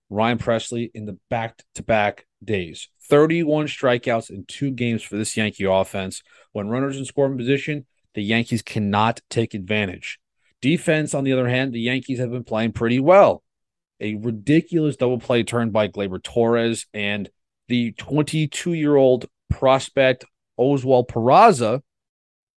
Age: 30-49